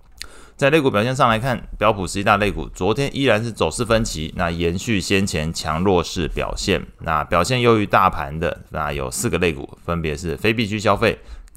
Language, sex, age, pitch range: Chinese, male, 20-39, 75-100 Hz